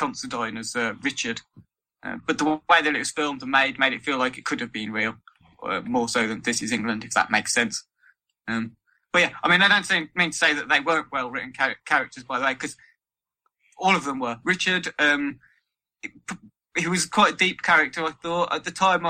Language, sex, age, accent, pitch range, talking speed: English, male, 20-39, British, 130-170 Hz, 225 wpm